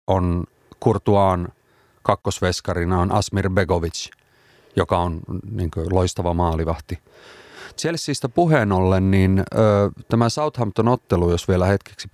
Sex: male